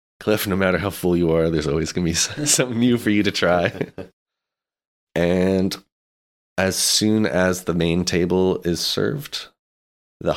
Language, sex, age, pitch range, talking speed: English, male, 30-49, 80-95 Hz, 160 wpm